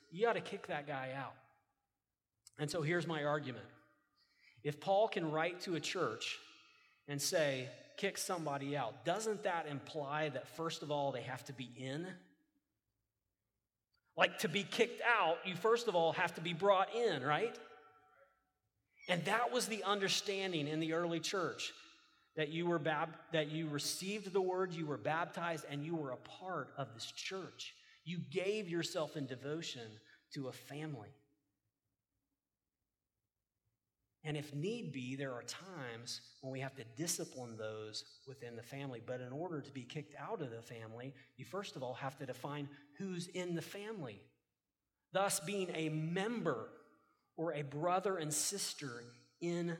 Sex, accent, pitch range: male, American, 135-190 Hz